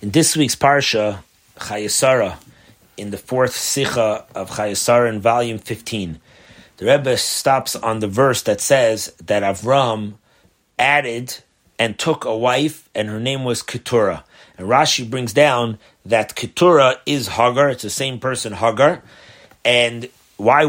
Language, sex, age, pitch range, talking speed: English, male, 30-49, 115-150 Hz, 140 wpm